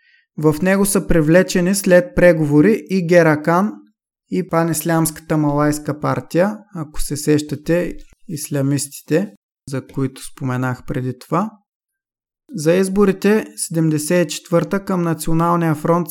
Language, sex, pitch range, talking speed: Bulgarian, male, 150-175 Hz, 100 wpm